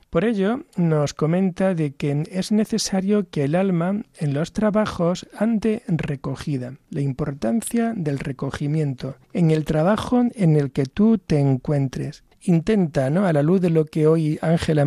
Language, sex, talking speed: Spanish, male, 155 wpm